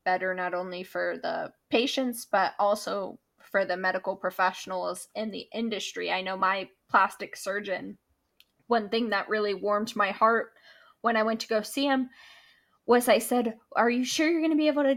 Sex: female